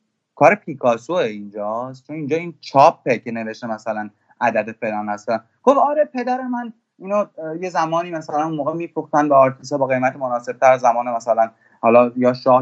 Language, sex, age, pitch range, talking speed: Persian, male, 30-49, 130-165 Hz, 170 wpm